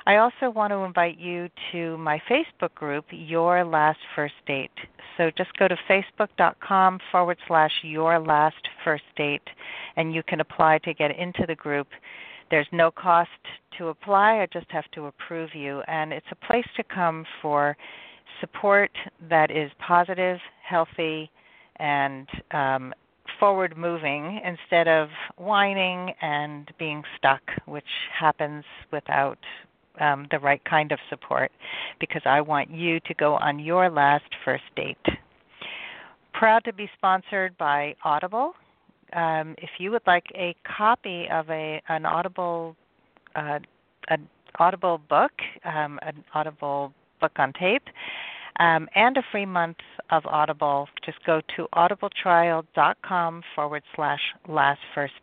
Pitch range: 150-180 Hz